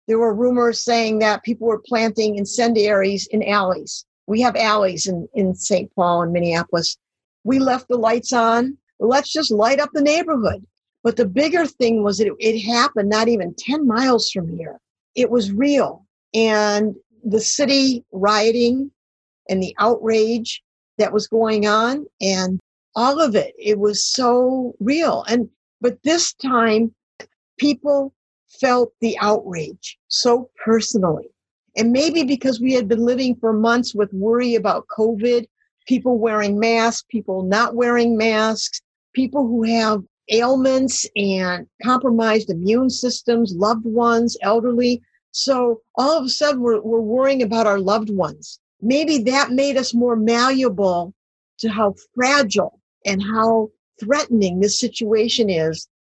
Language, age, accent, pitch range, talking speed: English, 50-69, American, 210-250 Hz, 145 wpm